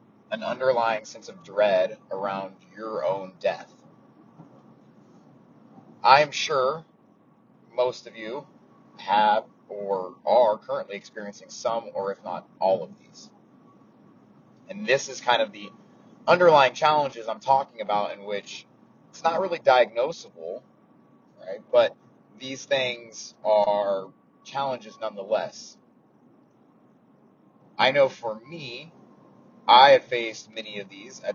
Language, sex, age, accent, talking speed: English, male, 30-49, American, 120 wpm